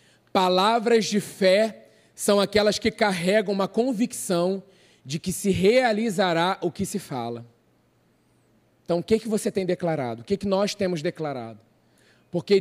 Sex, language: male, Portuguese